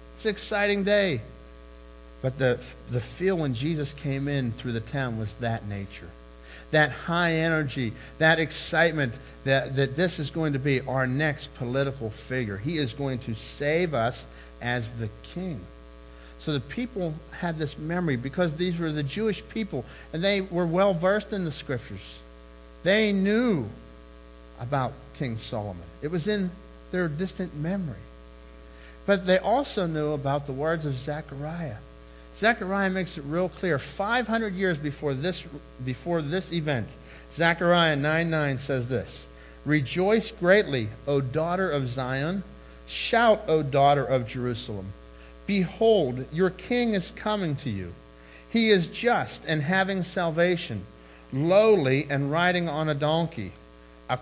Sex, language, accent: male, English, American